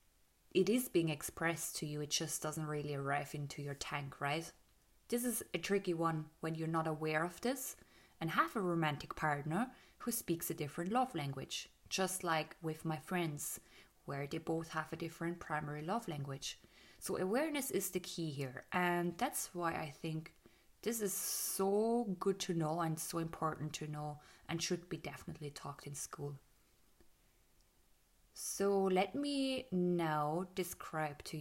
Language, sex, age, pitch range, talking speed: English, female, 20-39, 155-190 Hz, 165 wpm